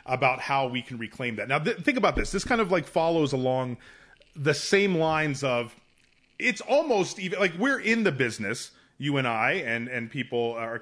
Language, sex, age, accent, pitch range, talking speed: English, male, 30-49, American, 120-155 Hz, 195 wpm